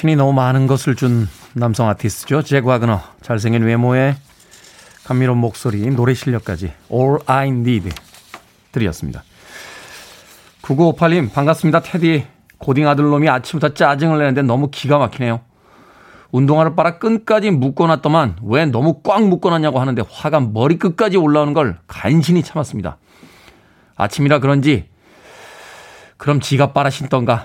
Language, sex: Korean, male